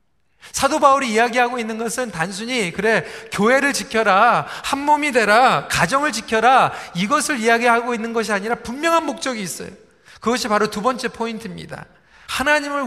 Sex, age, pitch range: male, 40-59, 205-260 Hz